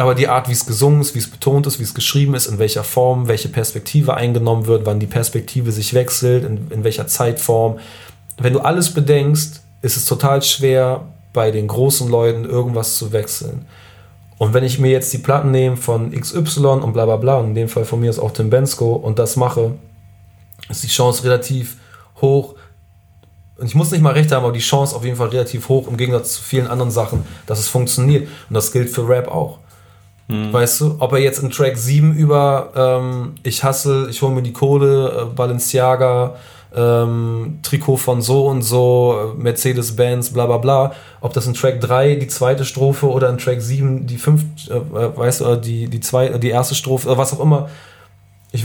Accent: German